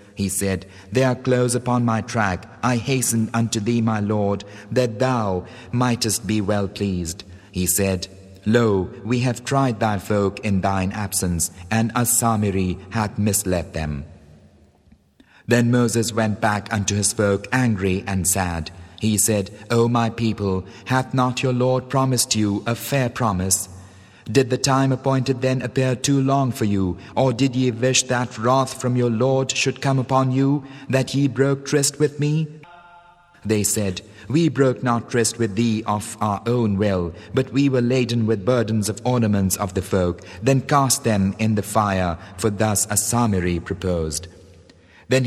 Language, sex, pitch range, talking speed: English, male, 95-130 Hz, 165 wpm